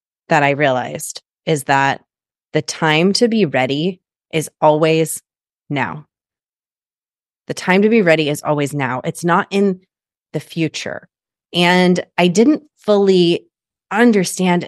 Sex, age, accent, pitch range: female, 30-49, American, 145-185 Hz